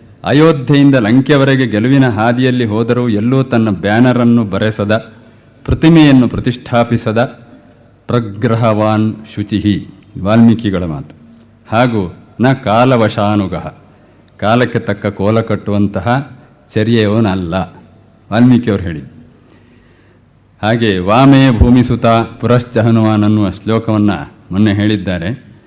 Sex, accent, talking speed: male, native, 75 wpm